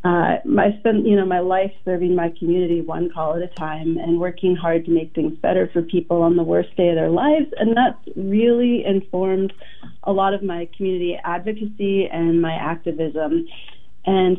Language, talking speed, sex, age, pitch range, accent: English, 190 wpm, female, 30-49, 170-200 Hz, American